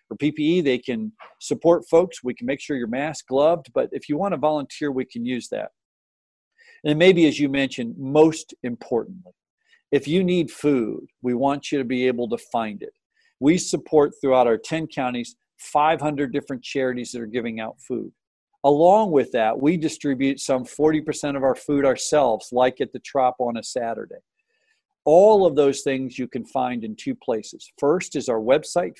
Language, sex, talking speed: English, male, 185 wpm